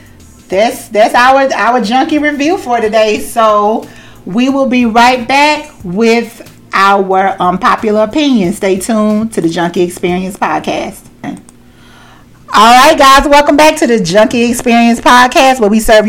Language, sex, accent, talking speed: English, female, American, 140 wpm